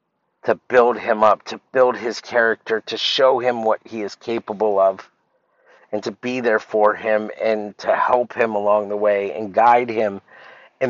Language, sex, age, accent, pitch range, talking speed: English, male, 50-69, American, 100-115 Hz, 180 wpm